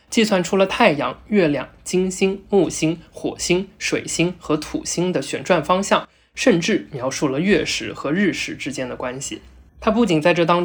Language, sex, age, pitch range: Chinese, male, 20-39, 150-185 Hz